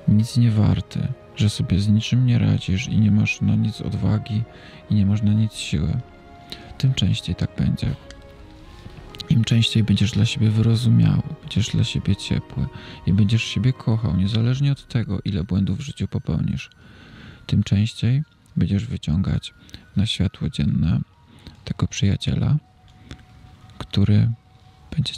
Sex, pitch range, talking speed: male, 100-115 Hz, 140 wpm